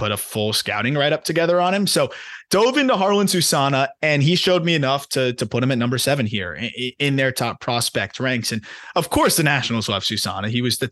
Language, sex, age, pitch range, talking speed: English, male, 20-39, 125-155 Hz, 235 wpm